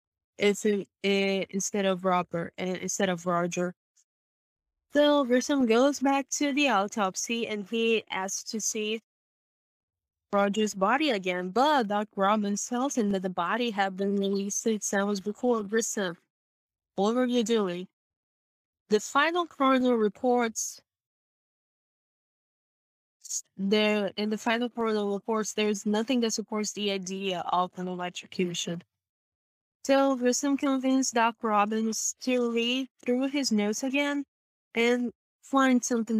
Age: 10-29